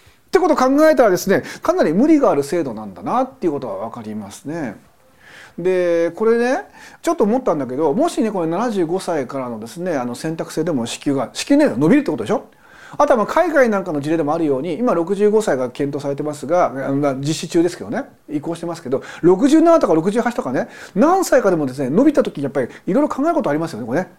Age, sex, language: 40-59, male, Japanese